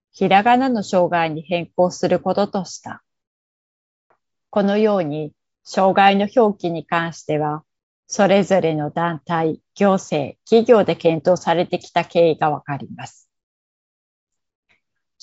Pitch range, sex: 165-205 Hz, female